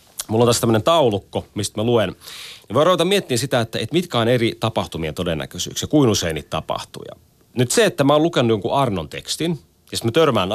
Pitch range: 95-150 Hz